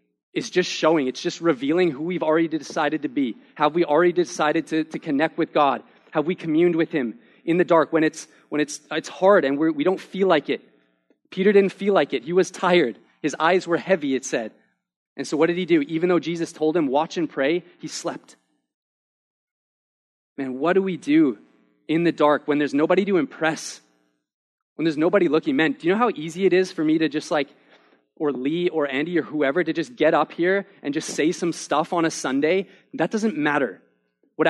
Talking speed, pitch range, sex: 215 wpm, 150-175 Hz, male